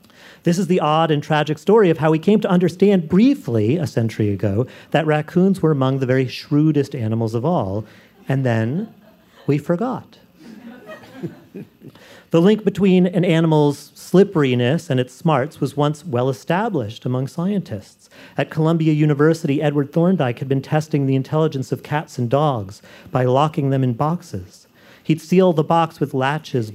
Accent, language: American, English